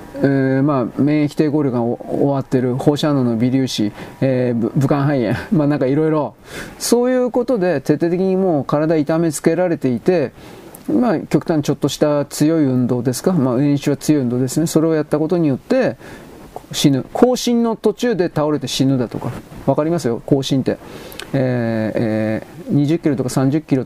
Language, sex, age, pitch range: Japanese, male, 40-59, 130-160 Hz